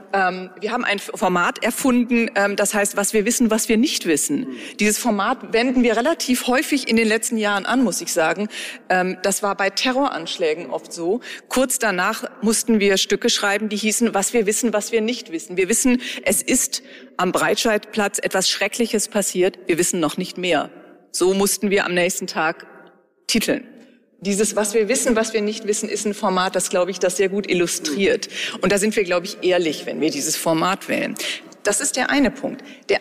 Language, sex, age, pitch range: German, female, 40-59, 190-240 Hz